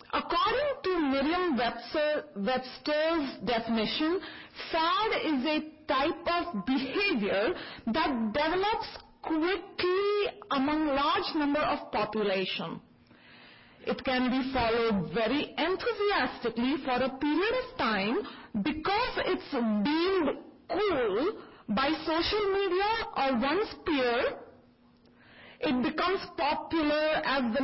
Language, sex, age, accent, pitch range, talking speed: English, female, 40-59, Indian, 245-335 Hz, 95 wpm